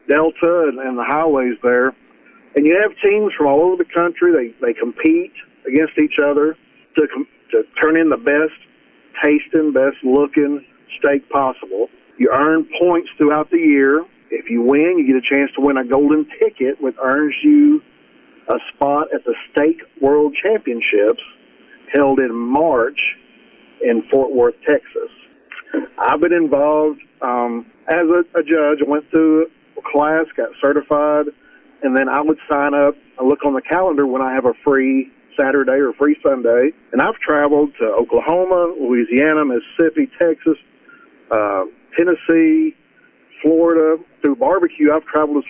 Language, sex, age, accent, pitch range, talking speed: English, male, 50-69, American, 135-175 Hz, 155 wpm